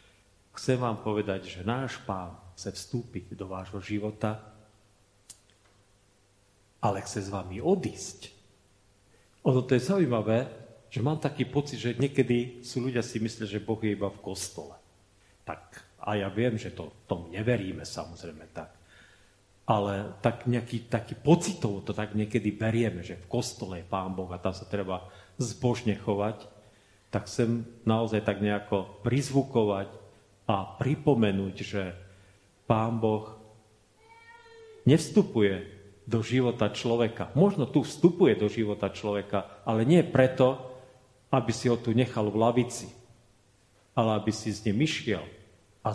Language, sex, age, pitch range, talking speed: Slovak, male, 40-59, 100-120 Hz, 135 wpm